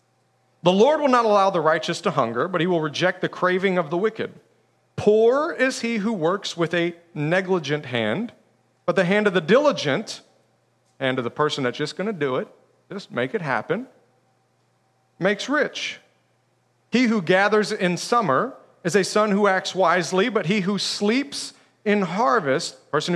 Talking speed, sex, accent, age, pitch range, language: 175 wpm, male, American, 40-59, 130-200 Hz, English